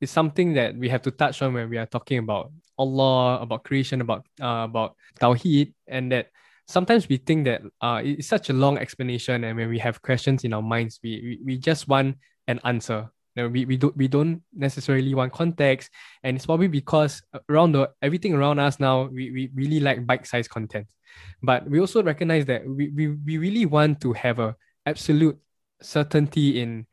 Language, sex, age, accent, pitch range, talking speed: English, male, 10-29, Malaysian, 125-150 Hz, 200 wpm